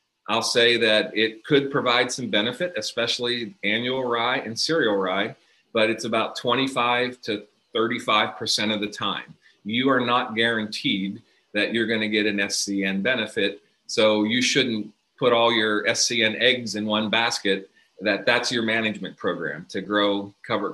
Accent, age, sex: American, 40-59, male